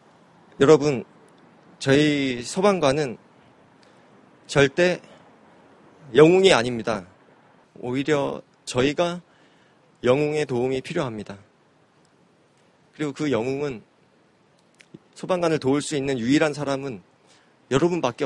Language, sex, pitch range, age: Korean, male, 125-170 Hz, 30-49